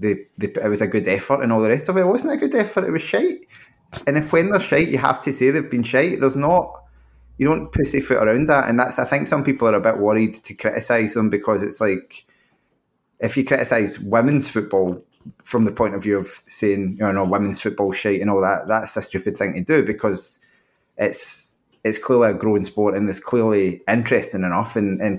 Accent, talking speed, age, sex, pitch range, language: British, 230 wpm, 20-39, male, 100-120 Hz, English